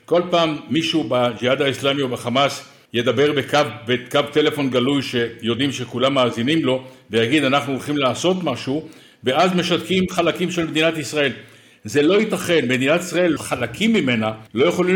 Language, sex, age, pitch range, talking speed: Hebrew, male, 60-79, 130-170 Hz, 145 wpm